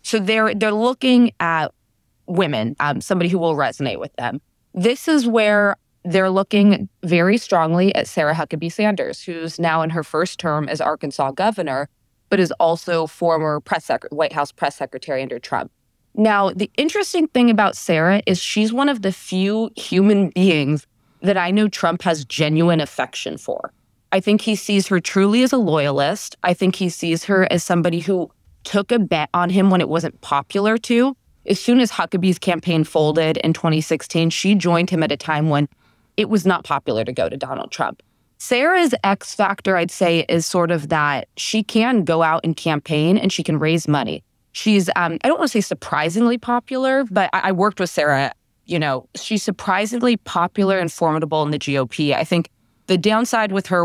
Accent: American